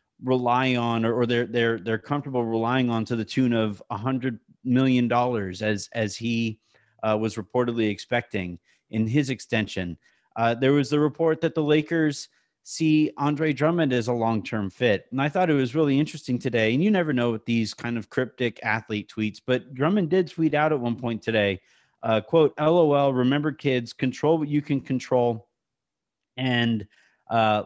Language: English